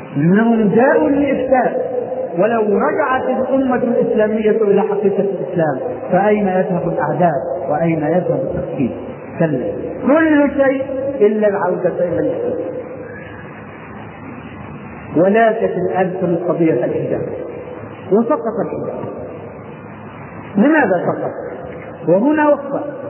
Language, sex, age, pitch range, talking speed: Arabic, male, 40-59, 180-245 Hz, 85 wpm